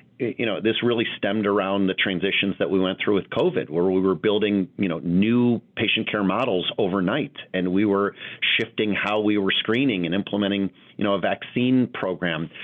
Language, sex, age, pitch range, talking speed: English, male, 40-59, 90-105 Hz, 190 wpm